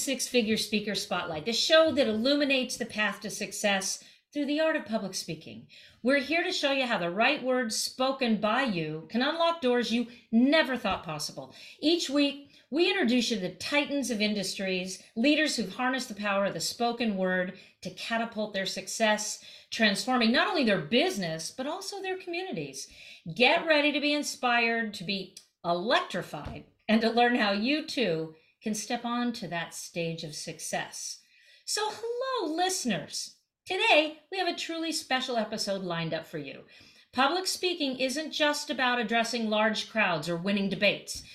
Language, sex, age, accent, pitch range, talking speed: English, female, 50-69, American, 195-290 Hz, 165 wpm